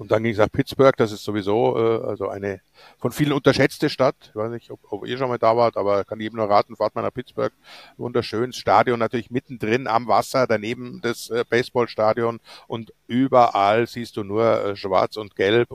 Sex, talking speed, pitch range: male, 210 wpm, 105-130 Hz